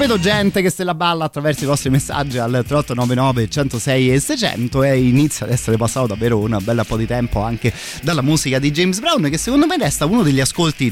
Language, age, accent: Italian, 30-49, native